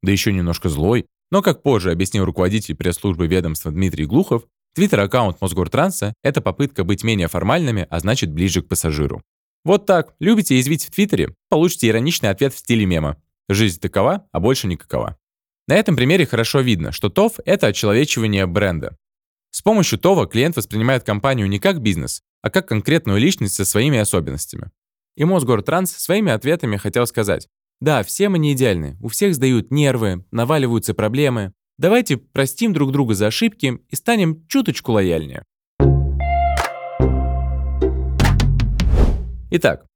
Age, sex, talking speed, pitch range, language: 20-39, male, 145 wpm, 95-140 Hz, Russian